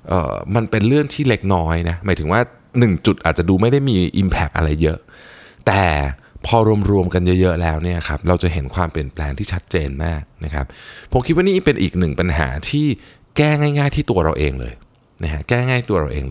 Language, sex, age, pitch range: Thai, male, 20-39, 80-120 Hz